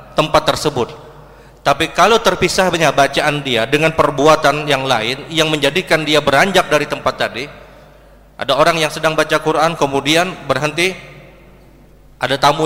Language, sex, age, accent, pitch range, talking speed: Indonesian, male, 30-49, native, 140-165 Hz, 135 wpm